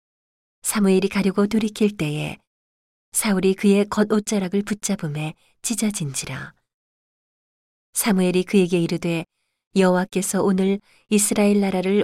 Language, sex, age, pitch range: Korean, female, 40-59, 165-200 Hz